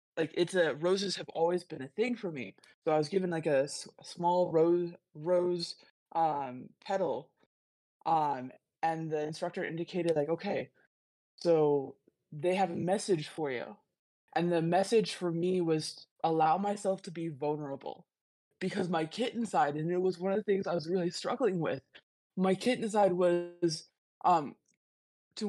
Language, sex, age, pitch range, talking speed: English, female, 20-39, 165-195 Hz, 165 wpm